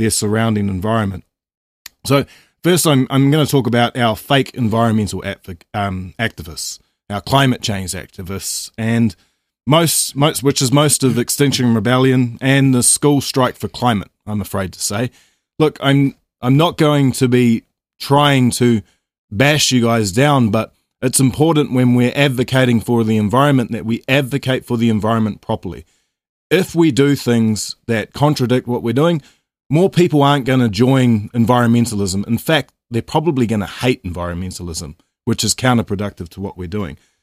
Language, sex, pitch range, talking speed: English, male, 100-135 Hz, 160 wpm